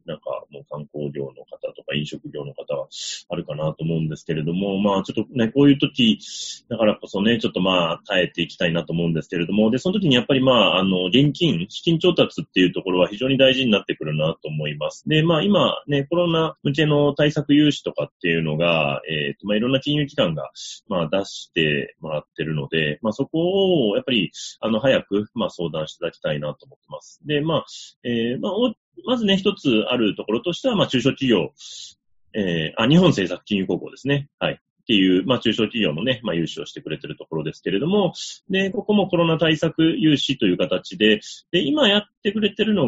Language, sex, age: Japanese, male, 30-49